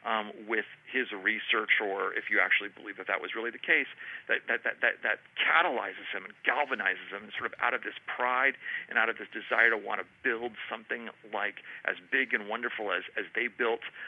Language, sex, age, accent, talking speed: English, male, 40-59, American, 215 wpm